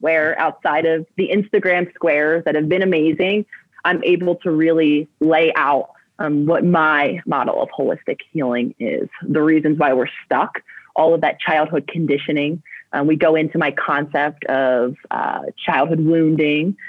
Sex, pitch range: female, 150-180 Hz